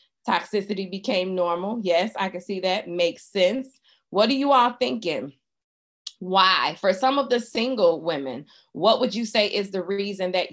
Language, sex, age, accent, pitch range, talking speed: English, female, 20-39, American, 170-210 Hz, 170 wpm